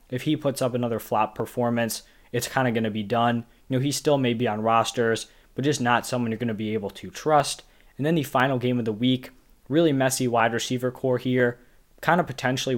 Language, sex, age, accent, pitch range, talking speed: English, male, 20-39, American, 115-140 Hz, 235 wpm